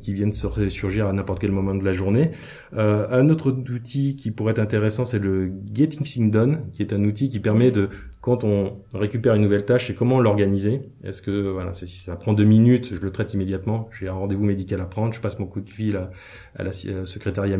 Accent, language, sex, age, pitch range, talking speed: French, French, male, 20-39, 100-120 Hz, 235 wpm